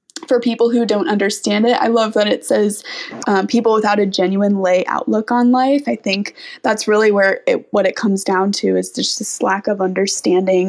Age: 20-39